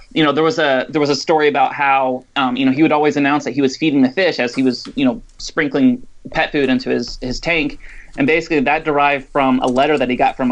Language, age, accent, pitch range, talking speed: English, 30-49, American, 130-155 Hz, 270 wpm